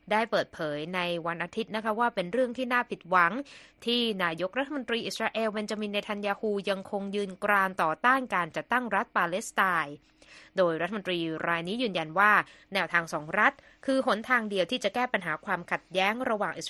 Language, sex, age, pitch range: Thai, female, 20-39, 175-230 Hz